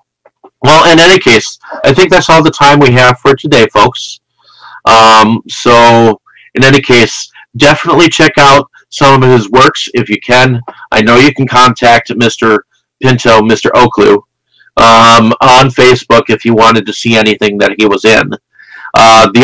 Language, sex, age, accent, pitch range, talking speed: English, male, 40-59, American, 110-140 Hz, 165 wpm